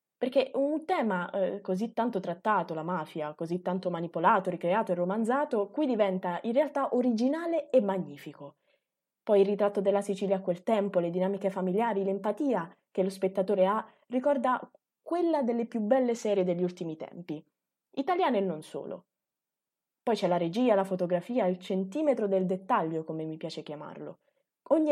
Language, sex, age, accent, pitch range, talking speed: Italian, female, 20-39, native, 180-240 Hz, 160 wpm